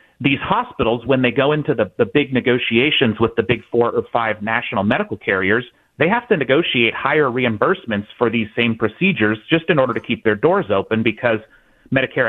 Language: English